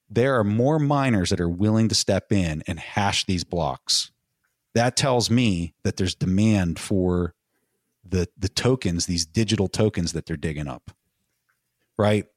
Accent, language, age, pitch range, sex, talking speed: American, English, 40-59, 90-110 Hz, male, 155 wpm